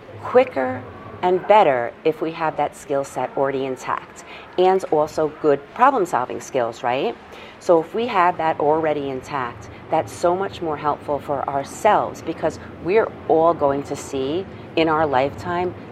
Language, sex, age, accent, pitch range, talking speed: English, female, 40-59, American, 135-165 Hz, 150 wpm